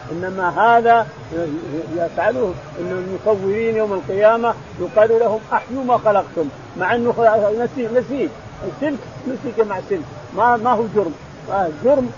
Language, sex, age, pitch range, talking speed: Arabic, male, 50-69, 190-235 Hz, 125 wpm